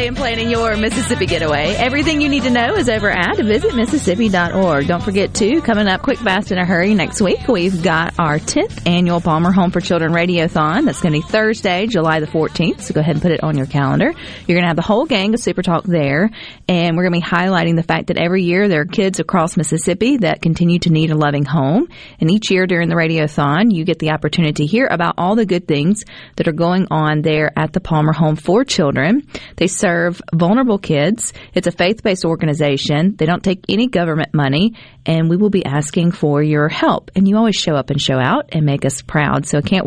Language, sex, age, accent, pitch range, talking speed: English, female, 40-59, American, 160-205 Hz, 230 wpm